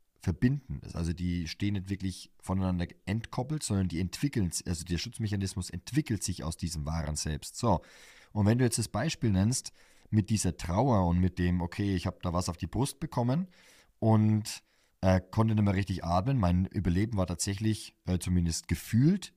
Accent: German